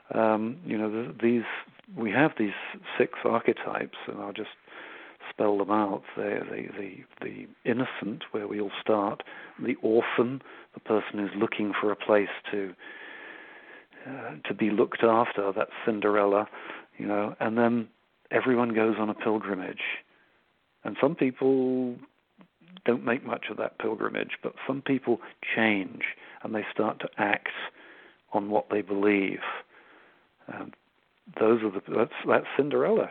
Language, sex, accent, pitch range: English, male, British, 105-135 Hz